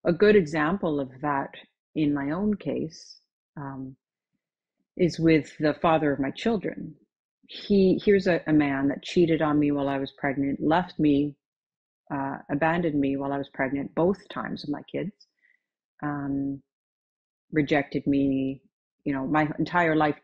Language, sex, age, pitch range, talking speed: English, female, 40-59, 145-200 Hz, 155 wpm